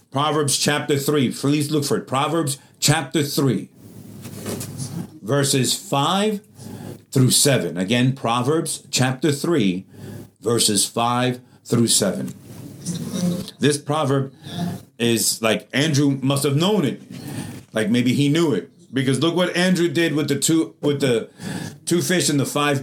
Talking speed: 135 wpm